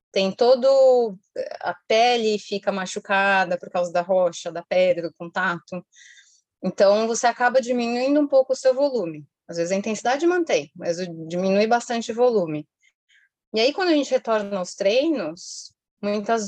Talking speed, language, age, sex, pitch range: 155 wpm, Portuguese, 20-39, female, 165-220 Hz